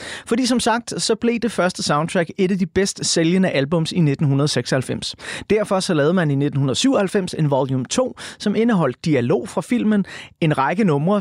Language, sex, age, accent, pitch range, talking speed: Danish, male, 30-49, native, 140-200 Hz, 175 wpm